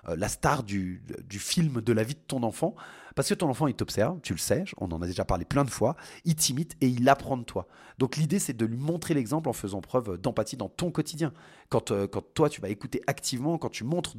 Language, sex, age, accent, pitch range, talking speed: French, male, 30-49, French, 105-150 Hz, 250 wpm